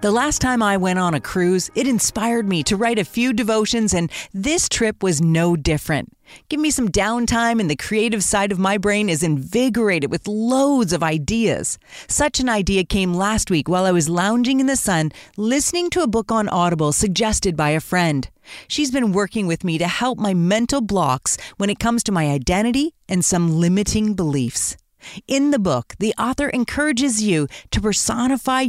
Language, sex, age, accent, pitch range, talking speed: English, female, 40-59, American, 180-245 Hz, 190 wpm